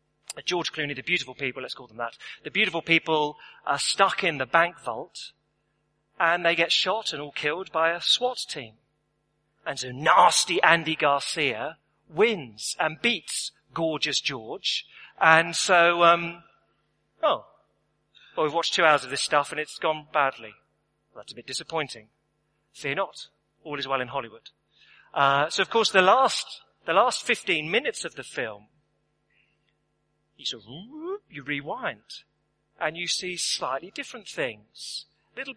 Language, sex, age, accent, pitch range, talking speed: English, male, 40-59, British, 130-170 Hz, 155 wpm